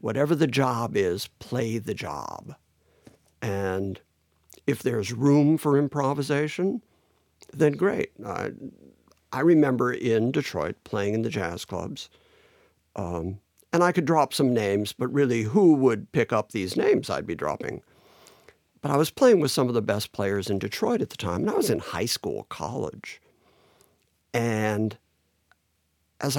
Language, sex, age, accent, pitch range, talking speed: English, male, 60-79, American, 100-135 Hz, 150 wpm